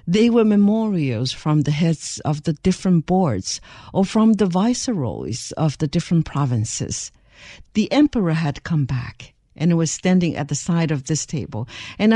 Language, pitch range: English, 145-215 Hz